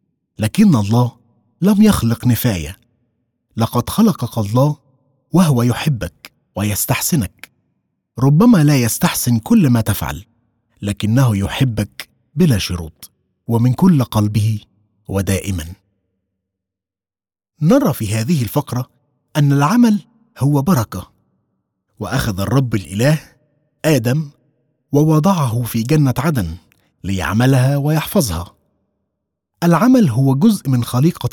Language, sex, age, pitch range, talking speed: Arabic, male, 30-49, 105-145 Hz, 90 wpm